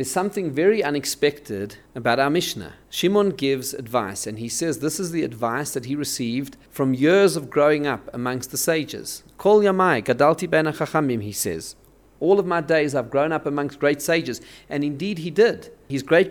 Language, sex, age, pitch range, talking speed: English, male, 40-59, 130-175 Hz, 170 wpm